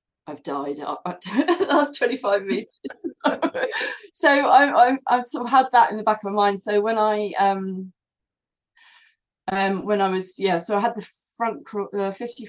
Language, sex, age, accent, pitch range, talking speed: English, female, 30-49, British, 160-215 Hz, 180 wpm